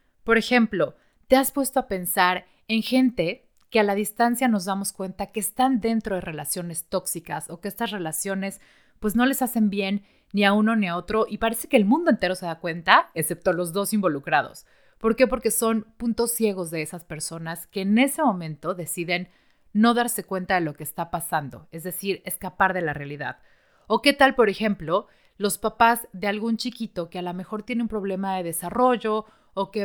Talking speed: 200 wpm